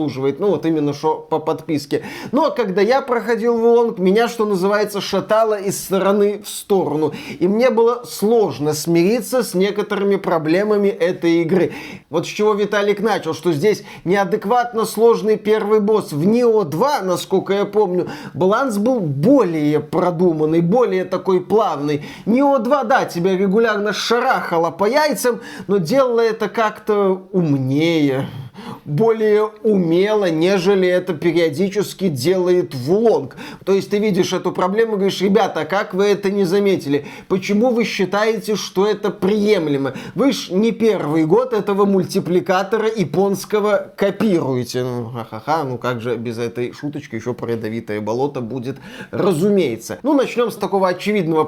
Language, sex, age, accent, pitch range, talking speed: Russian, male, 20-39, native, 165-215 Hz, 140 wpm